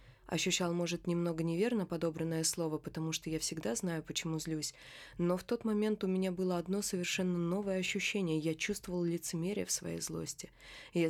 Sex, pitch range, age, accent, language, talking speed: female, 160-185 Hz, 20-39, native, Russian, 170 wpm